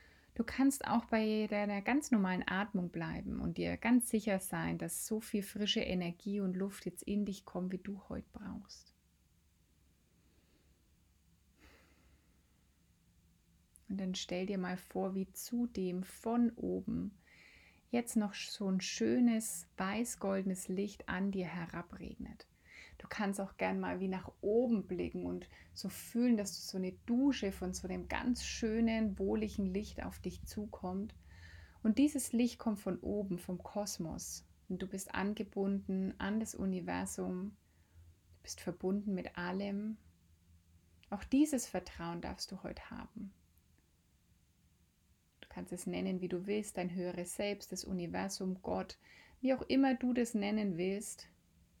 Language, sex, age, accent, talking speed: German, female, 30-49, German, 140 wpm